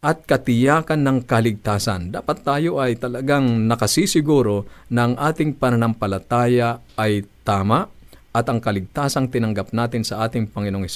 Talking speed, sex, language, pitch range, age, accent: 125 wpm, male, Filipino, 105-130 Hz, 50-69, native